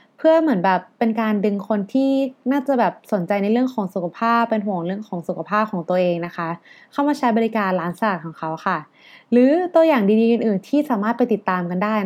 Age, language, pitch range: 20-39, Thai, 185-235 Hz